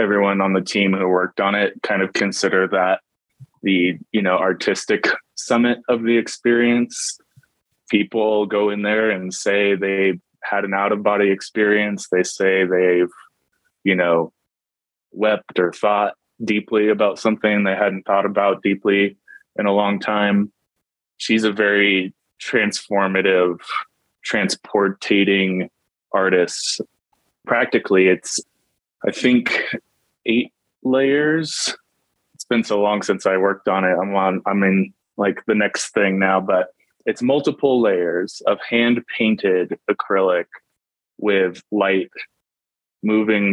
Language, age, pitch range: English, 20-39, 95-105 Hz